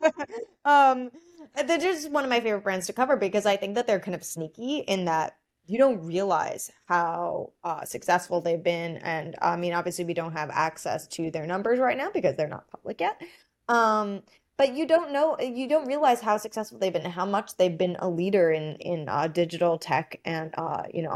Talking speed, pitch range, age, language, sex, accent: 210 wpm, 165-220 Hz, 20-39, English, female, American